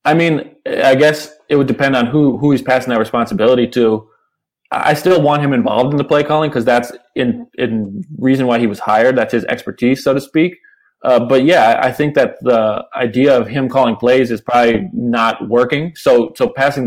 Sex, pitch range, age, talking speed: male, 115-135 Hz, 20-39, 205 wpm